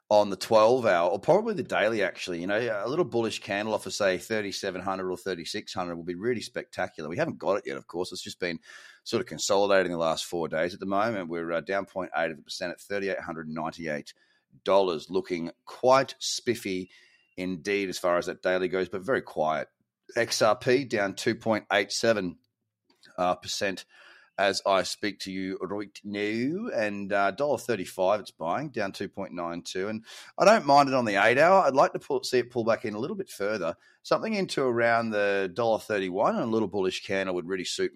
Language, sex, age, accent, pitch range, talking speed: English, male, 30-49, Australian, 95-115 Hz, 180 wpm